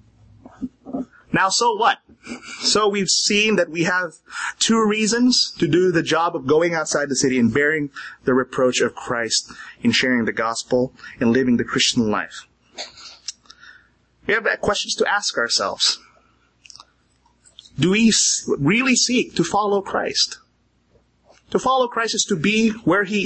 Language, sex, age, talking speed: English, male, 30-49, 145 wpm